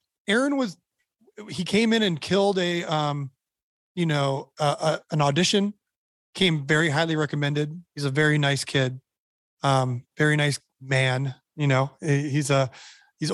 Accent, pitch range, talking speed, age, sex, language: American, 145-185 Hz, 150 wpm, 30-49, male, English